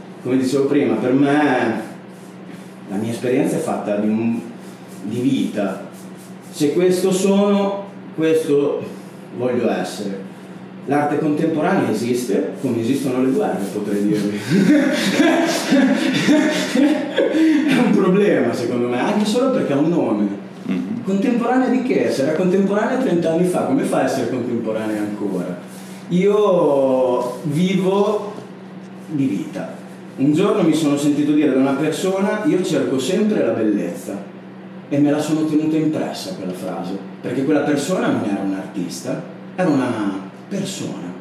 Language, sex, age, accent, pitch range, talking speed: Italian, male, 30-49, native, 120-190 Hz, 130 wpm